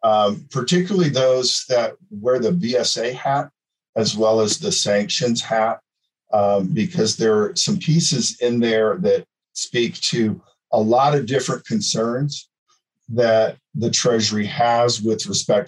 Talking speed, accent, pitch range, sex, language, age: 135 wpm, American, 110-170 Hz, male, English, 50-69